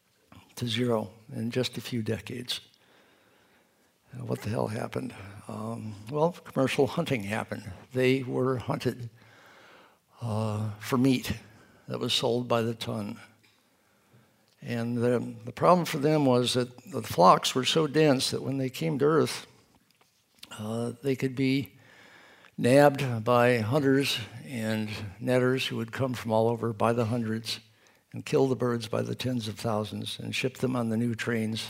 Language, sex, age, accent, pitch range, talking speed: English, male, 60-79, American, 115-135 Hz, 155 wpm